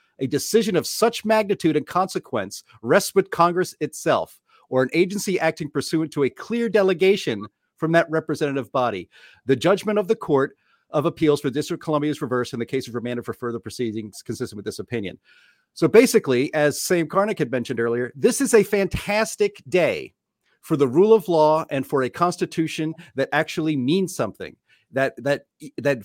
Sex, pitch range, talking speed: male, 135-185 Hz, 180 wpm